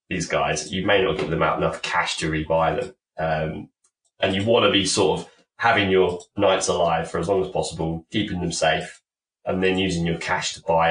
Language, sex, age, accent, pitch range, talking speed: English, male, 20-39, British, 85-105 Hz, 220 wpm